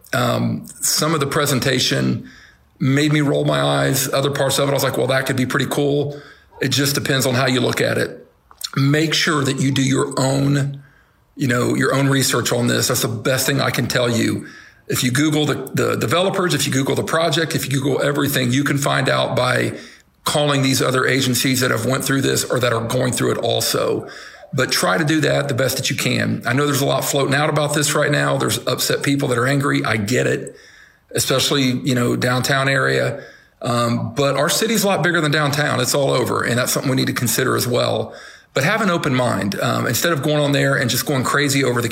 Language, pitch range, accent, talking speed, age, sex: English, 125-145 Hz, American, 235 wpm, 50-69, male